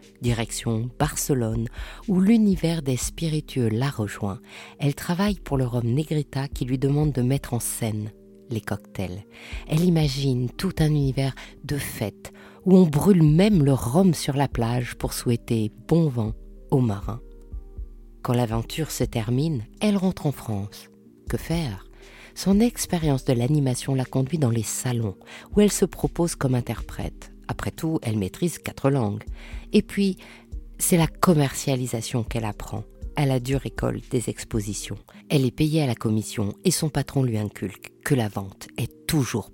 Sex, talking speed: female, 160 wpm